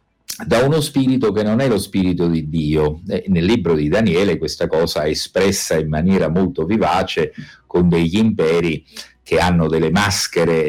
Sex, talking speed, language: male, 165 wpm, Italian